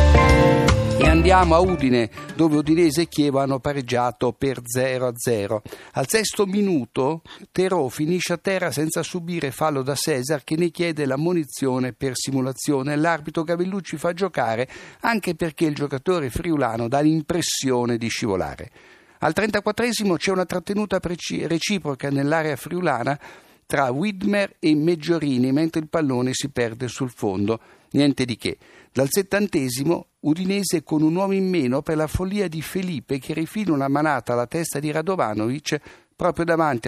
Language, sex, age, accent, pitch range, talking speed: Italian, male, 60-79, native, 130-170 Hz, 145 wpm